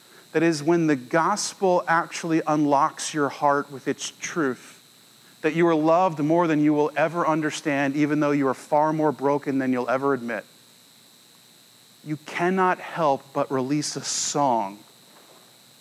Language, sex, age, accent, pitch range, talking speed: English, male, 40-59, American, 155-205 Hz, 150 wpm